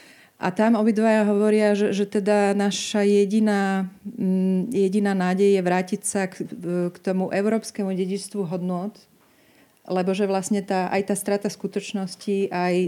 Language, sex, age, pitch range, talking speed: Slovak, female, 30-49, 180-205 Hz, 135 wpm